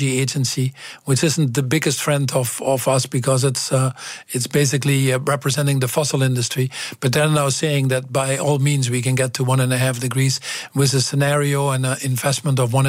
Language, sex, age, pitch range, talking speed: Dutch, male, 50-69, 130-150 Hz, 205 wpm